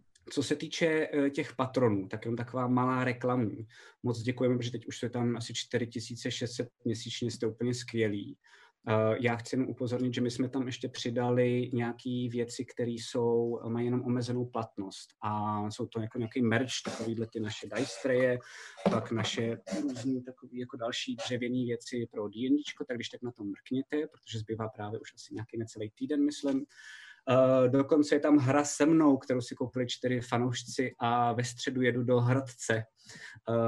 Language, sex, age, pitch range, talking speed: Czech, male, 20-39, 115-125 Hz, 165 wpm